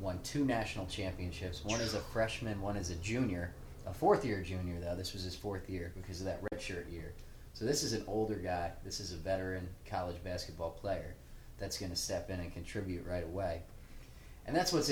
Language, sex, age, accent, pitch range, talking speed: English, male, 20-39, American, 90-105 Hz, 205 wpm